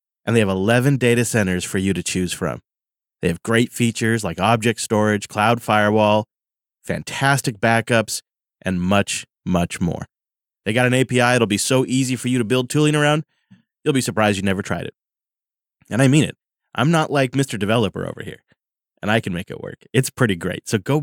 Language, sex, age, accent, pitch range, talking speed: English, male, 30-49, American, 105-135 Hz, 195 wpm